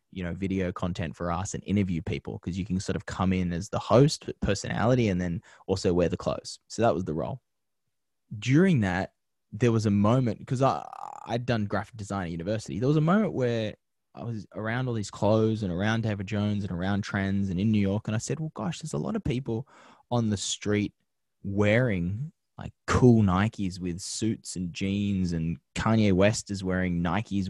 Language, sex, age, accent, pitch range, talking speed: English, male, 10-29, Australian, 95-115 Hz, 205 wpm